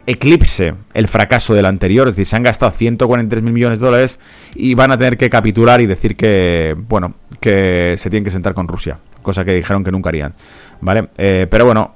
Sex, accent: male, Spanish